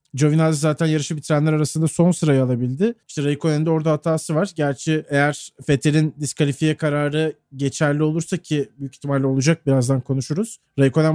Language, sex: Turkish, male